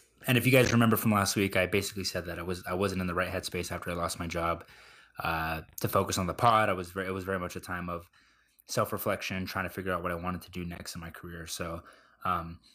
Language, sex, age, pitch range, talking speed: English, male, 20-39, 90-105 Hz, 275 wpm